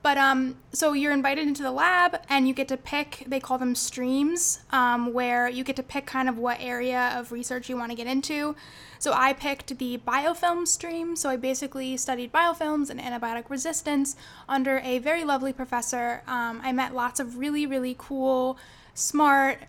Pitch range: 245-280 Hz